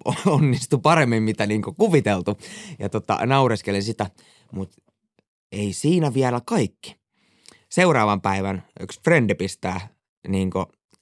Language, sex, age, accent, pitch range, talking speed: Finnish, male, 20-39, native, 100-135 Hz, 110 wpm